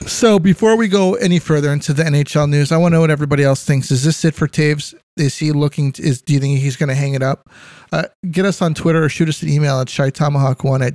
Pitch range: 145-175 Hz